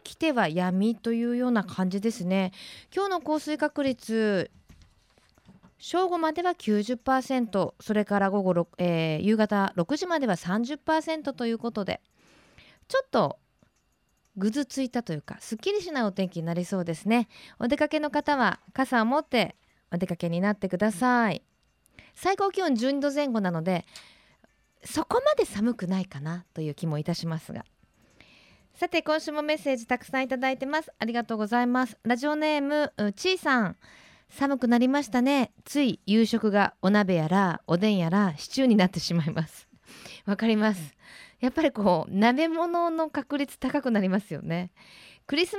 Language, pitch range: Japanese, 195-285 Hz